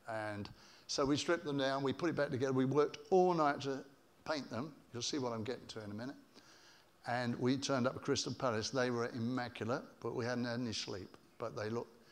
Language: English